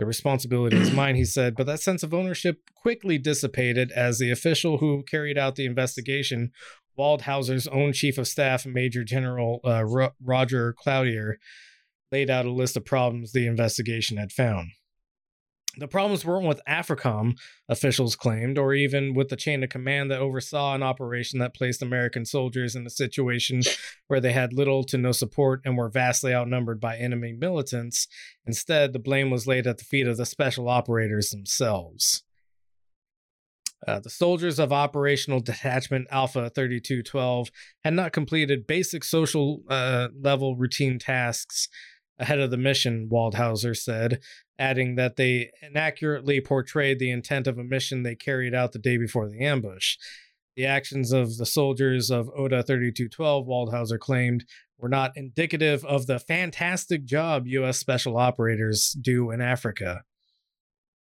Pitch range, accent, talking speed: 120-140 Hz, American, 155 wpm